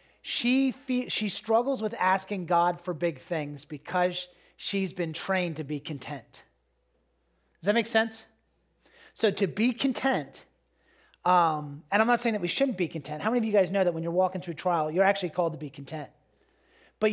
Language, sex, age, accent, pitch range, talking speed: English, male, 40-59, American, 165-215 Hz, 190 wpm